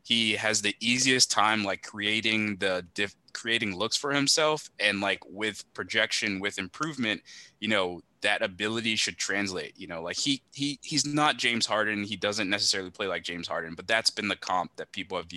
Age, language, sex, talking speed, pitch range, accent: 20-39, English, male, 190 wpm, 90-110 Hz, American